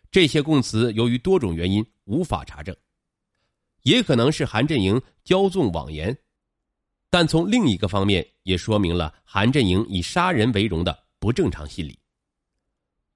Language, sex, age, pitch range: Chinese, male, 30-49, 90-140 Hz